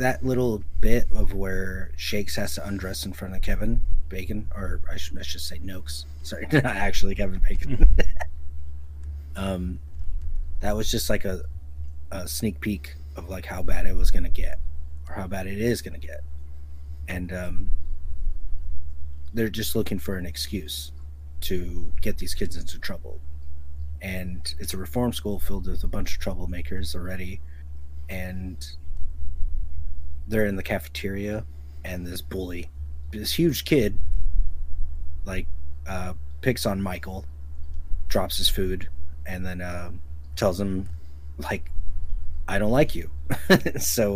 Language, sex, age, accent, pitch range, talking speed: English, male, 30-49, American, 75-95 Hz, 145 wpm